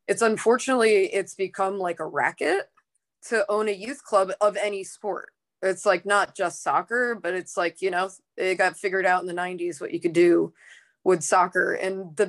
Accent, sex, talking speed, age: American, female, 195 wpm, 20-39